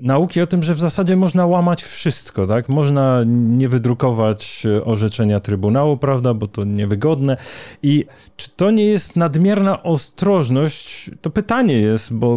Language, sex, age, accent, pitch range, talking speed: Polish, male, 30-49, native, 120-170 Hz, 145 wpm